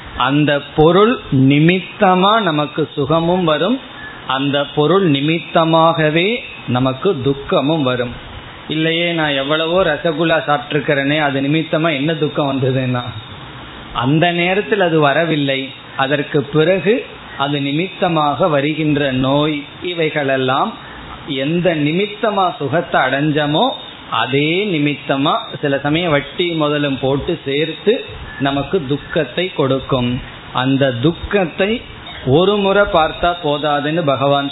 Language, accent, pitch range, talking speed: Tamil, native, 140-175 Hz, 95 wpm